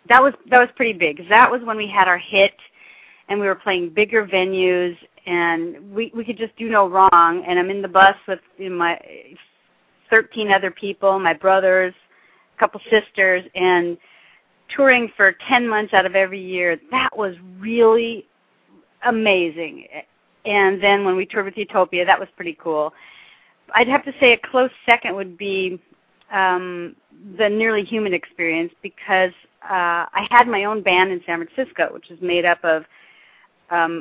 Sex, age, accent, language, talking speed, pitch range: female, 40-59, American, English, 175 wpm, 170-210 Hz